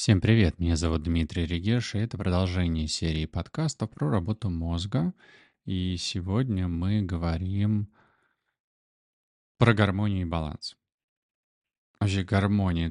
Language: Russian